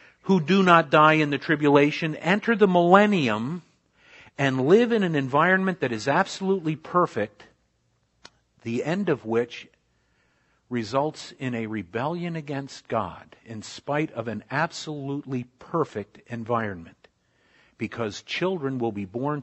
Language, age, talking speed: Italian, 50-69, 125 wpm